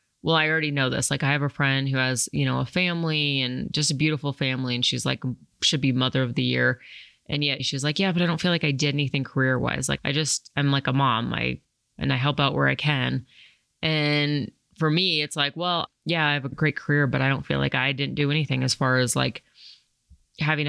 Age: 30-49